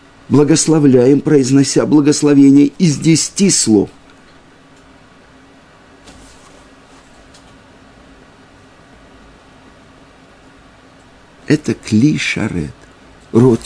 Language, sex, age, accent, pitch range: Russian, male, 50-69, native, 125-170 Hz